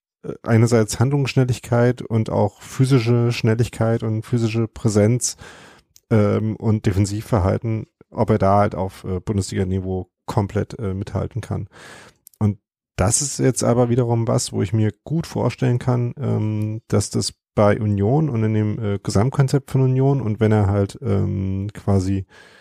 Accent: German